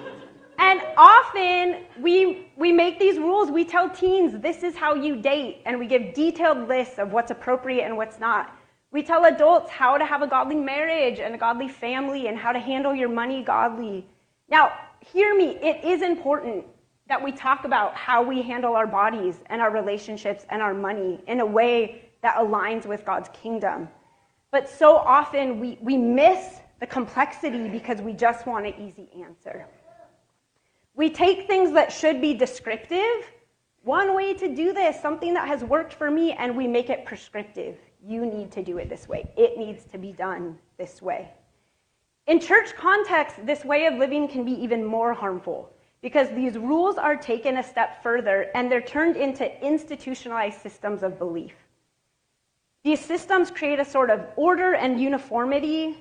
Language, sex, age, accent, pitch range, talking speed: English, female, 30-49, American, 230-320 Hz, 175 wpm